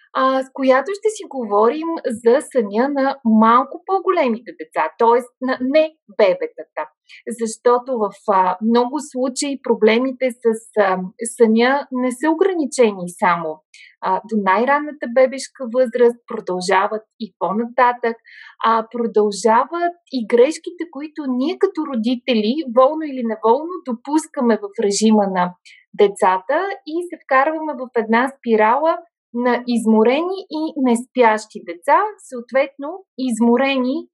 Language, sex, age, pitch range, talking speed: Bulgarian, female, 30-49, 220-280 Hz, 115 wpm